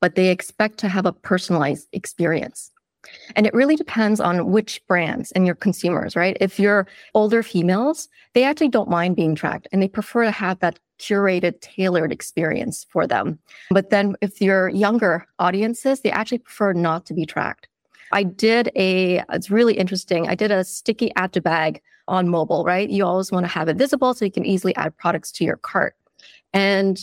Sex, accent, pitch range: female, American, 180-220 Hz